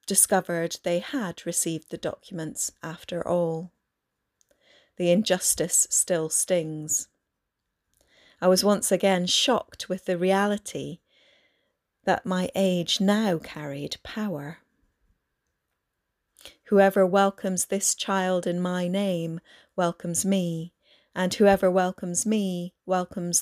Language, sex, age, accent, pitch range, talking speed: English, female, 30-49, British, 175-195 Hz, 100 wpm